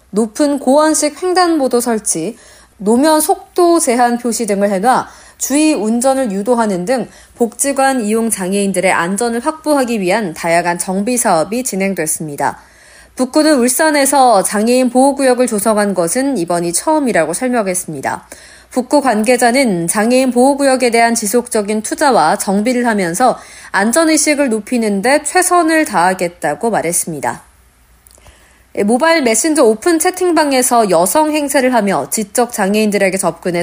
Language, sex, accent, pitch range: Korean, female, native, 205-285 Hz